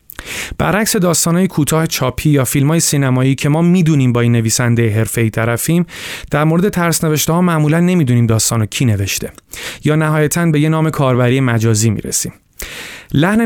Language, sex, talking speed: Persian, male, 155 wpm